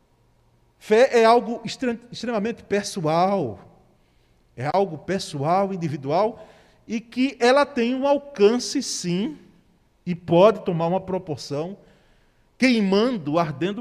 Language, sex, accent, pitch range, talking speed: Portuguese, male, Brazilian, 165-235 Hz, 100 wpm